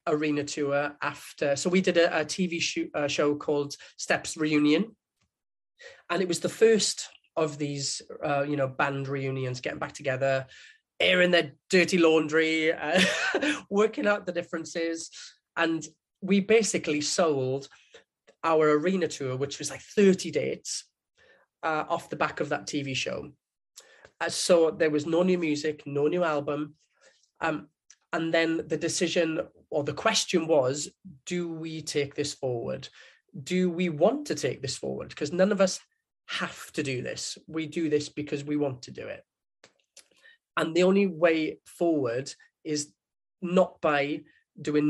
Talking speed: 155 wpm